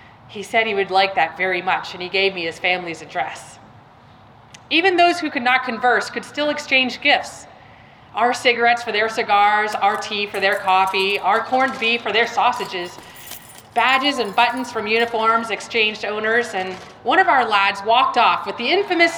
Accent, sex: American, female